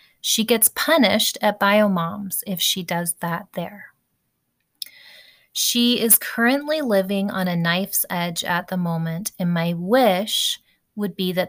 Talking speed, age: 145 wpm, 30-49